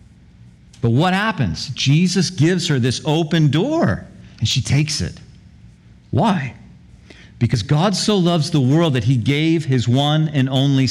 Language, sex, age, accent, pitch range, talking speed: English, male, 50-69, American, 120-175 Hz, 150 wpm